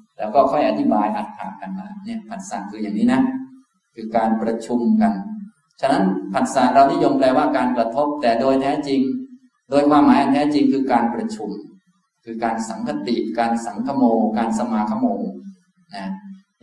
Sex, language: male, Thai